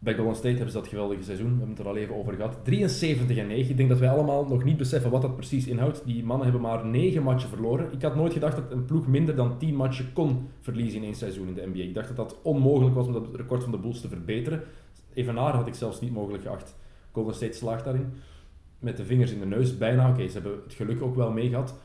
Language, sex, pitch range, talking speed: Dutch, male, 115-145 Hz, 270 wpm